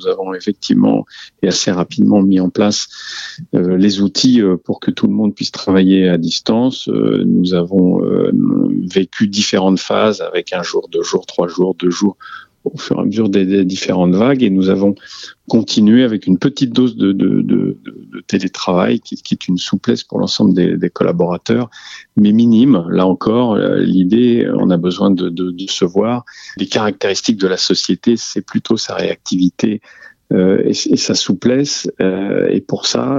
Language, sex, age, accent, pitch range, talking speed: French, male, 40-59, French, 90-120 Hz, 180 wpm